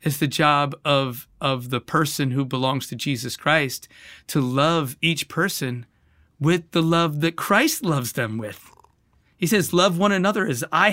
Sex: male